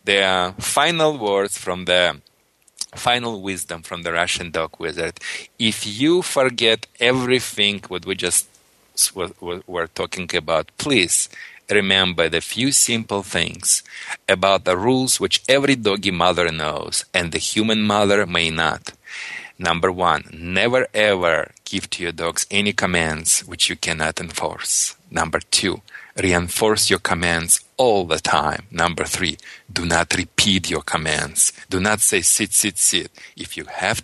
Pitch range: 90-110 Hz